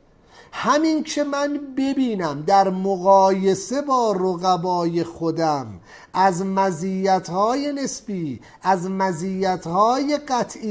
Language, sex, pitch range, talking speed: English, male, 150-225 Hz, 85 wpm